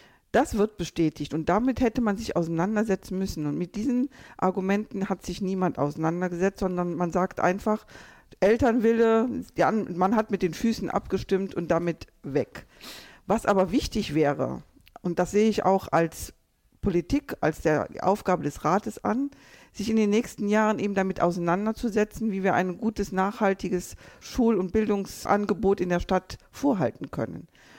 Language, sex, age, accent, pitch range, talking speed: German, female, 50-69, German, 180-220 Hz, 150 wpm